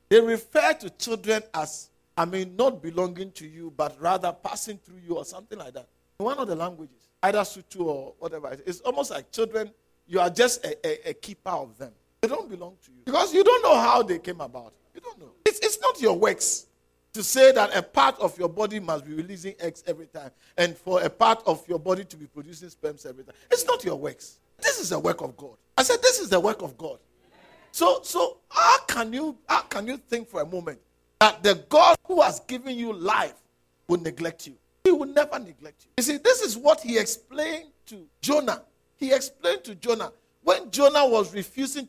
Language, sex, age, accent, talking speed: English, male, 50-69, Nigerian, 220 wpm